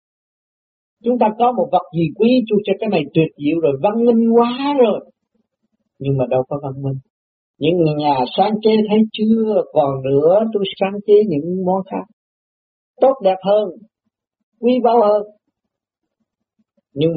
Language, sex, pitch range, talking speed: Vietnamese, male, 170-240 Hz, 155 wpm